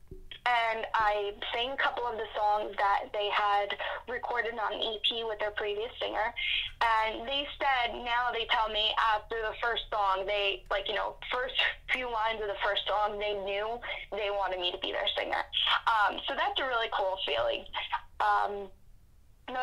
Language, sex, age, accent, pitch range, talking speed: English, female, 10-29, American, 210-265 Hz, 175 wpm